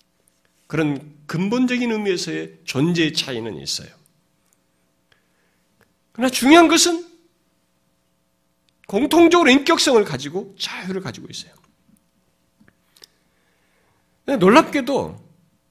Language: Korean